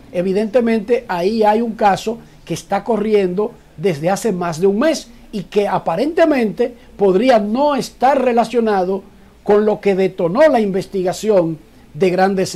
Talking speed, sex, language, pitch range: 140 wpm, male, Spanish, 185-245 Hz